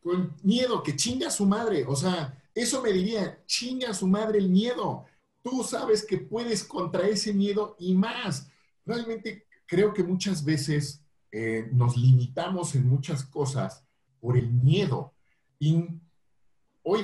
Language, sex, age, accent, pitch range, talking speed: Spanish, male, 50-69, Mexican, 135-180 Hz, 150 wpm